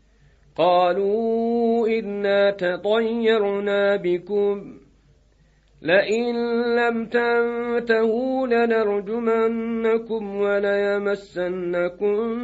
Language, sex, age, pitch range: Turkish, male, 40-59, 205-235 Hz